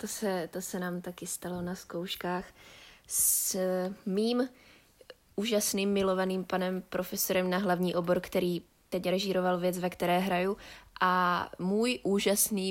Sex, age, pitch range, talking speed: female, 20-39, 165-200 Hz, 130 wpm